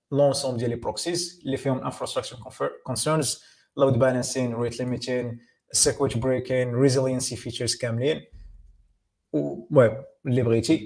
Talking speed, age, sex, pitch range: 90 wpm, 20-39, male, 120-150 Hz